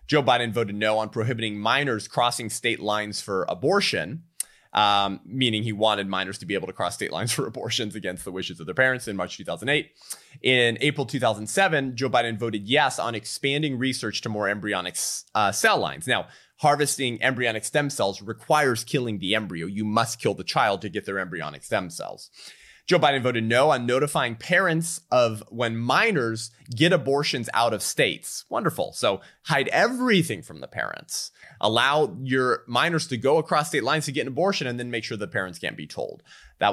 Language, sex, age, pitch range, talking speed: English, male, 30-49, 110-145 Hz, 190 wpm